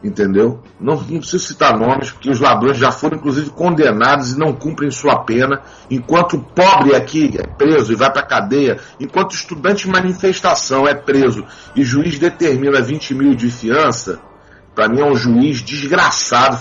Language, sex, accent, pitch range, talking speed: Portuguese, male, Brazilian, 130-170 Hz, 175 wpm